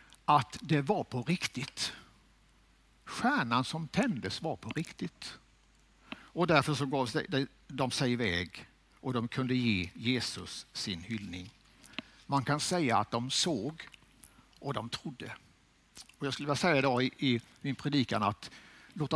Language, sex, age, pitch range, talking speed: Swedish, male, 60-79, 120-170 Hz, 140 wpm